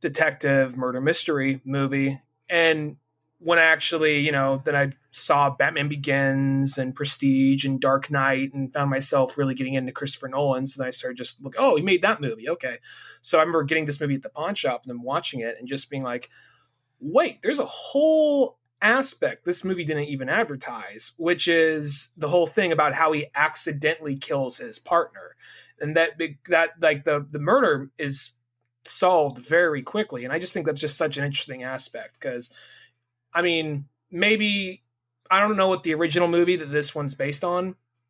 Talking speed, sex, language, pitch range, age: 185 wpm, male, English, 135-165 Hz, 20-39